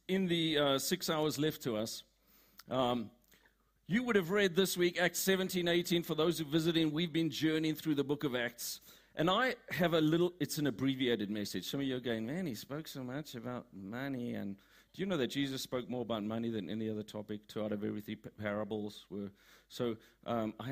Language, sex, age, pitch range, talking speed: English, male, 50-69, 130-185 Hz, 220 wpm